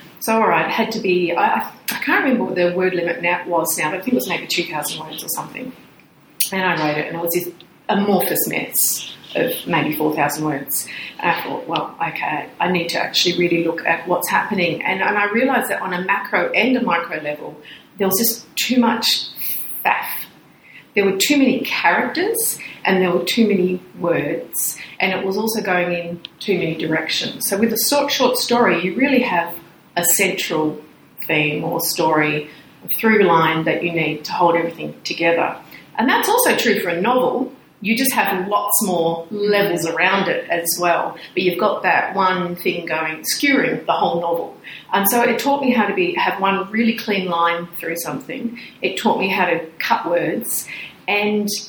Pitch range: 170-225 Hz